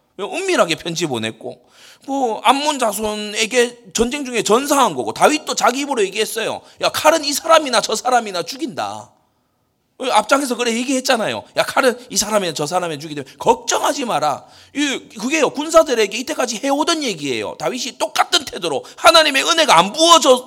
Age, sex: 30-49, male